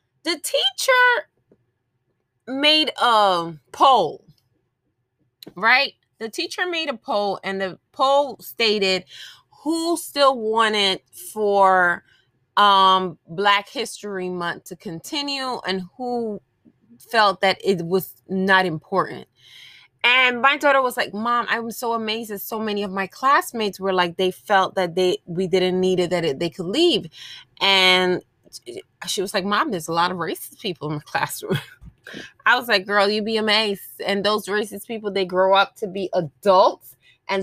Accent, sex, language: American, female, English